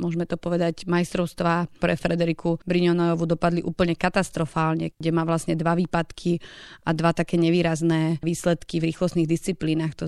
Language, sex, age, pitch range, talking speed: Slovak, female, 30-49, 165-185 Hz, 145 wpm